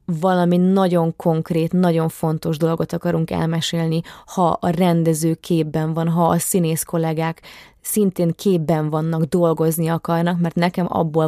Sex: female